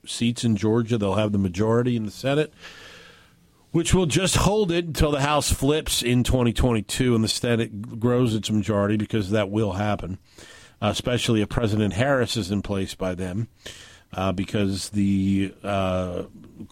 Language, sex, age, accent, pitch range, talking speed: English, male, 50-69, American, 100-120 Hz, 160 wpm